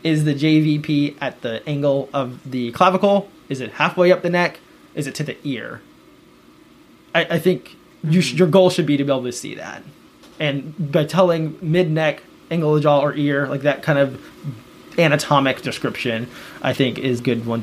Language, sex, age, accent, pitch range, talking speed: English, male, 20-39, American, 135-160 Hz, 190 wpm